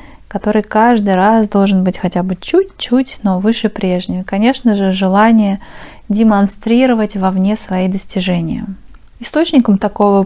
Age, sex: 20-39, female